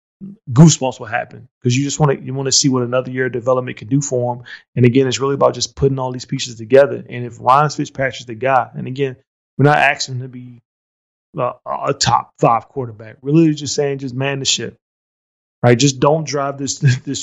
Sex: male